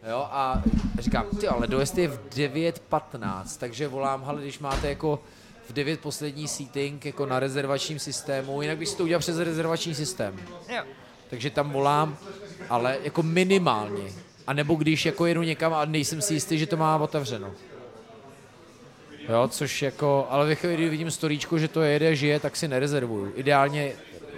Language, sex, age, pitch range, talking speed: Czech, male, 30-49, 130-155 Hz, 160 wpm